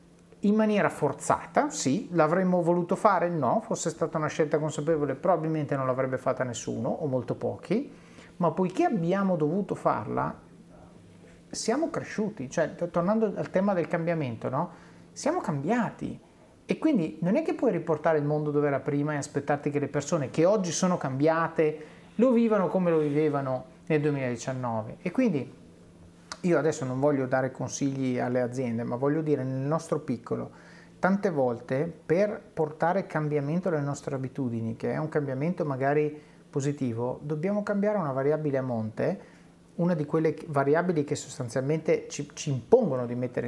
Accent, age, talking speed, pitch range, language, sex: native, 30-49, 155 wpm, 135-175 Hz, Italian, male